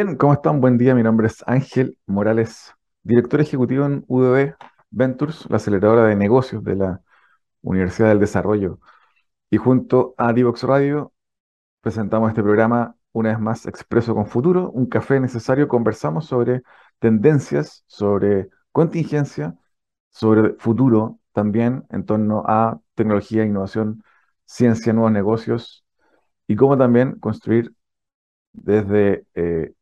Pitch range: 105-130 Hz